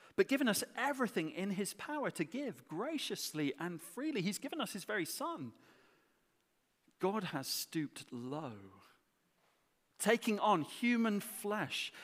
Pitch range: 130-200 Hz